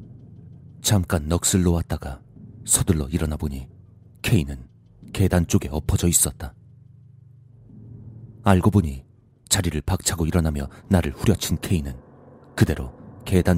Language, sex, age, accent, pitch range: Korean, male, 40-59, native, 85-115 Hz